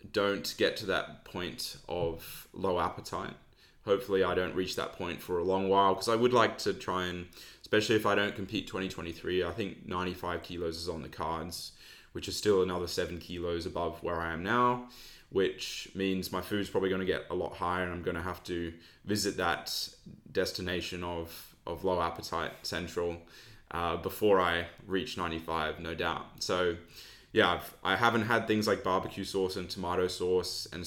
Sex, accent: male, Australian